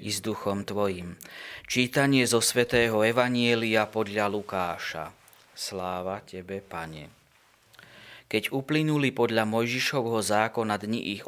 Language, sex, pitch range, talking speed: Slovak, male, 100-120 Hz, 105 wpm